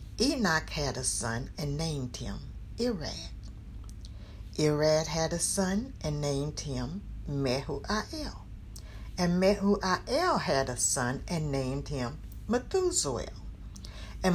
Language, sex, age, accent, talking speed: English, female, 60-79, American, 110 wpm